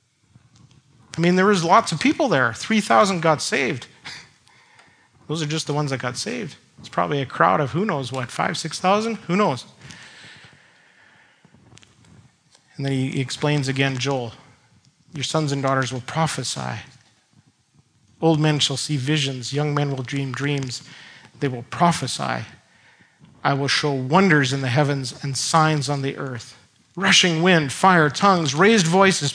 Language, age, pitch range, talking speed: English, 40-59, 135-190 Hz, 155 wpm